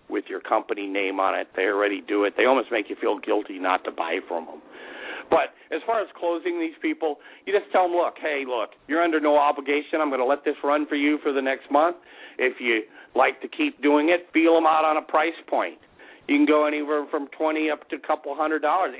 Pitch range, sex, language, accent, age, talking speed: 155-245 Hz, male, English, American, 50-69, 245 wpm